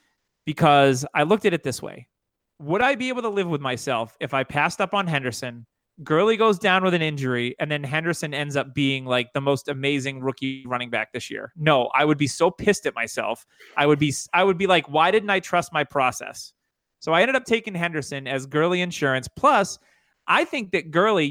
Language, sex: English, male